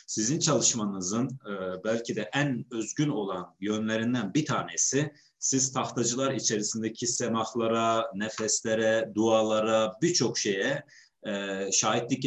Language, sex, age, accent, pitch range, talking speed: Turkish, male, 50-69, native, 110-145 Hz, 105 wpm